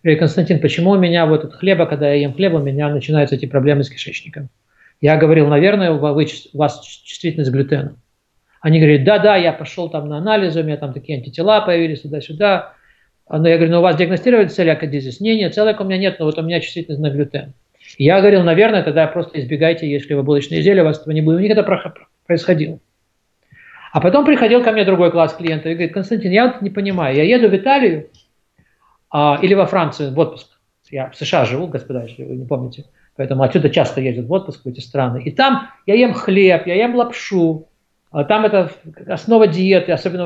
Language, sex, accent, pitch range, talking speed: Russian, male, native, 150-195 Hz, 210 wpm